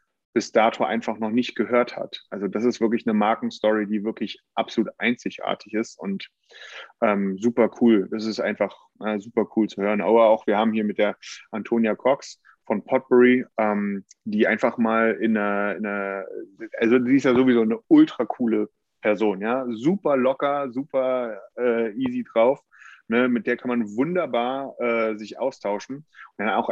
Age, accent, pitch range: 30-49, German, 105-125 Hz